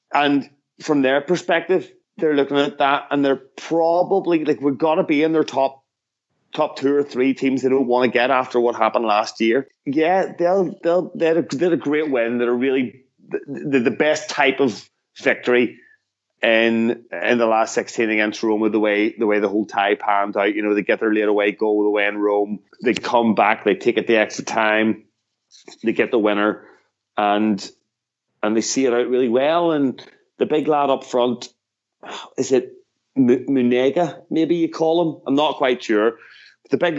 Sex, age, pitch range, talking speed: male, 30-49, 115-170 Hz, 195 wpm